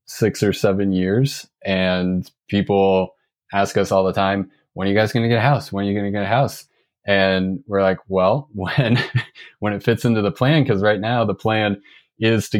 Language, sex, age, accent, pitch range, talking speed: English, male, 20-39, American, 95-110 Hz, 220 wpm